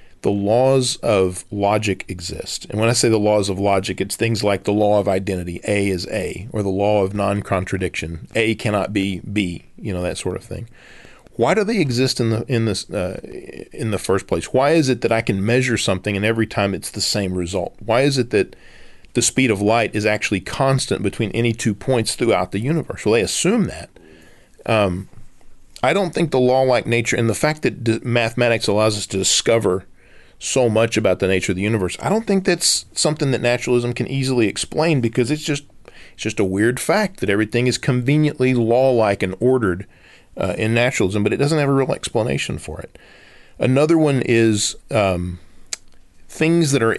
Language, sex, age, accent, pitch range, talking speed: English, male, 40-59, American, 100-130 Hz, 200 wpm